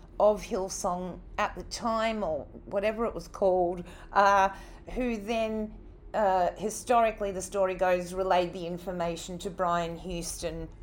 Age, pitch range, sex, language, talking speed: 40-59, 180-220 Hz, female, English, 135 wpm